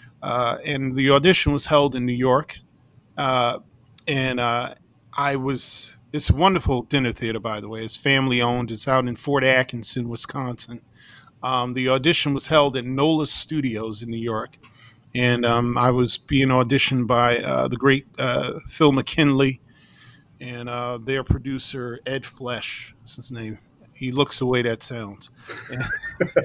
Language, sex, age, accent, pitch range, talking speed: English, male, 40-59, American, 120-140 Hz, 160 wpm